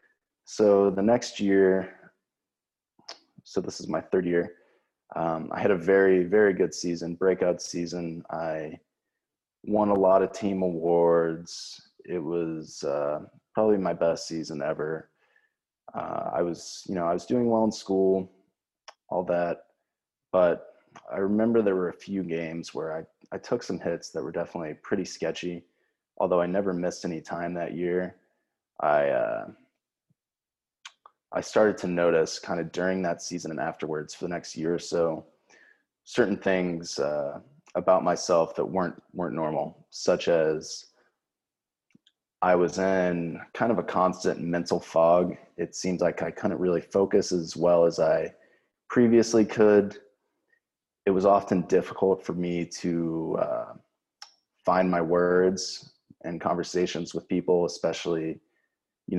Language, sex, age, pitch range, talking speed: English, male, 20-39, 85-95 Hz, 145 wpm